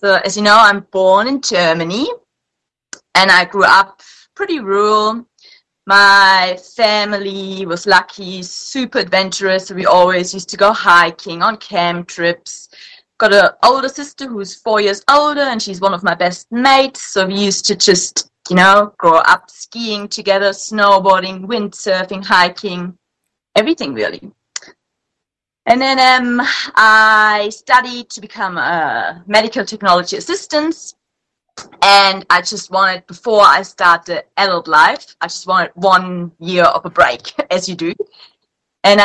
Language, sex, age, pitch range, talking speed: English, female, 20-39, 190-245 Hz, 140 wpm